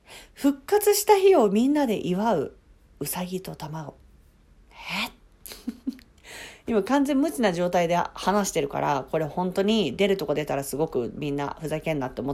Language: Japanese